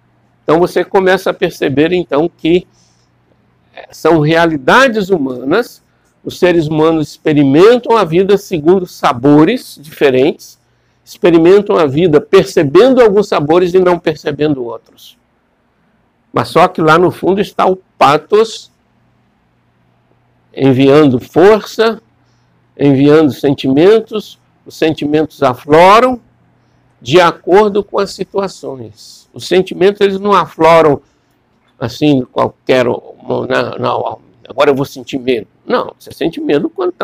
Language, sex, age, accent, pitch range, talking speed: Portuguese, male, 60-79, Brazilian, 130-190 Hz, 105 wpm